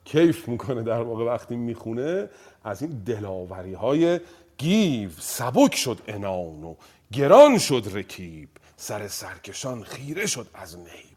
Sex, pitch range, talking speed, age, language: male, 110-175 Hz, 130 wpm, 40-59, Persian